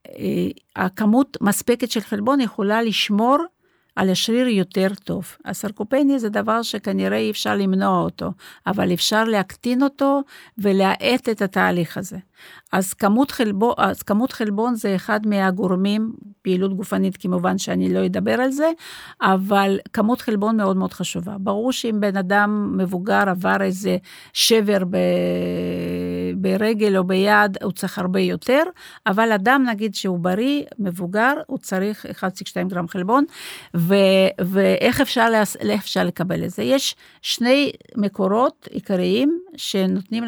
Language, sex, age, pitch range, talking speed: Hebrew, female, 50-69, 190-245 Hz, 135 wpm